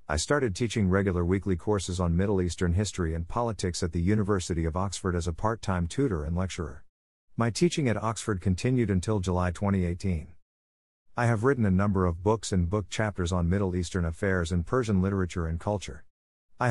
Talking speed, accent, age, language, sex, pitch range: 185 wpm, American, 50-69, English, male, 85-110 Hz